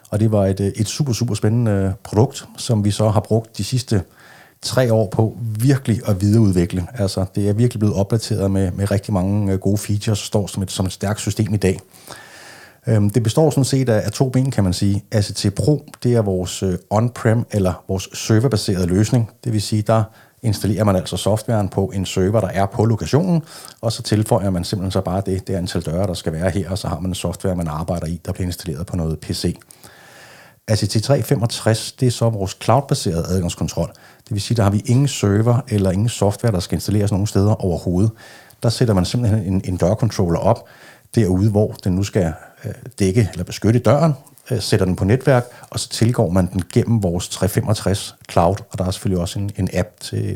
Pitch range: 95-115 Hz